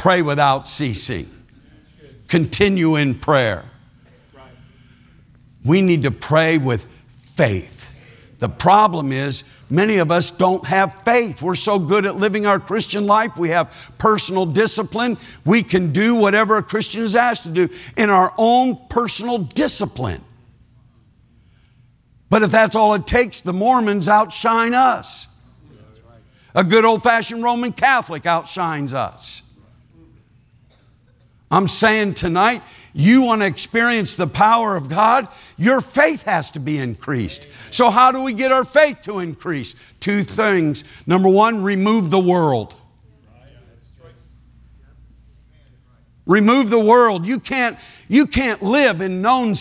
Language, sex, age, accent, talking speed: English, male, 60-79, American, 130 wpm